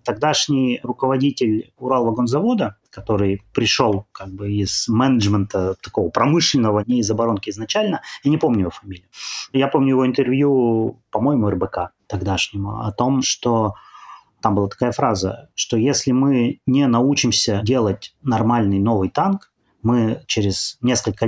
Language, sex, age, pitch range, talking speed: Russian, male, 30-49, 105-135 Hz, 120 wpm